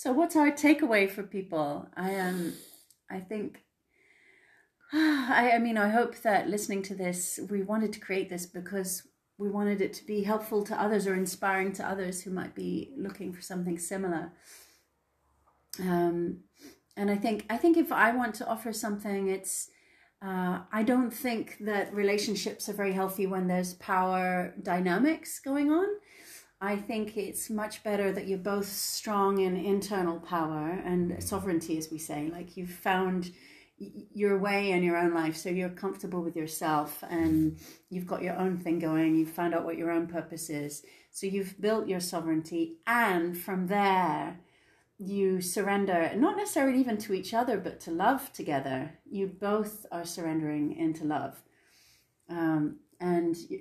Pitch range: 175-215 Hz